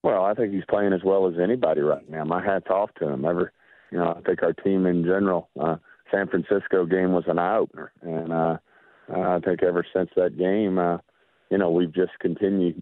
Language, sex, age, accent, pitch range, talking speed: English, male, 40-59, American, 85-95 Hz, 220 wpm